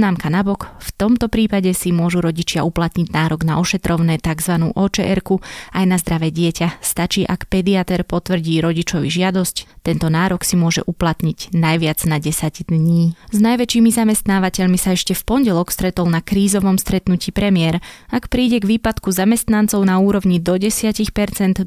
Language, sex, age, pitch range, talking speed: Slovak, female, 20-39, 170-195 Hz, 145 wpm